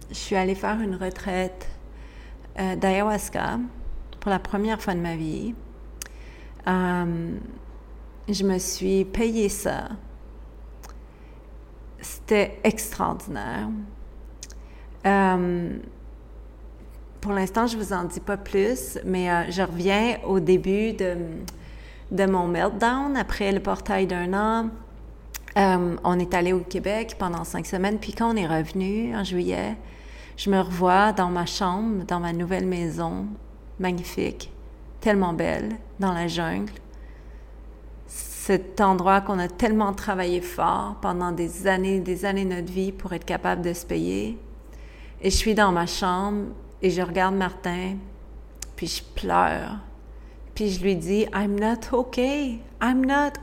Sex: female